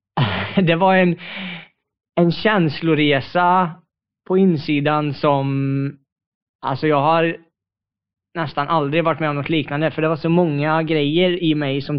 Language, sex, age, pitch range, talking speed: Swedish, male, 20-39, 125-155 Hz, 135 wpm